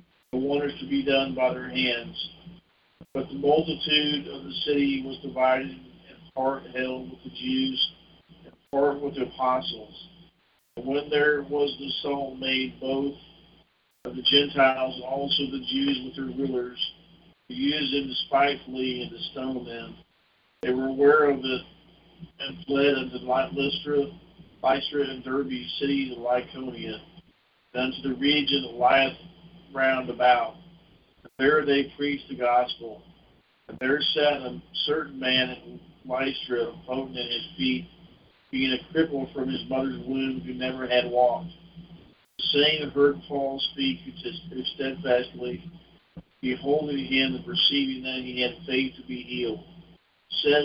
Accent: American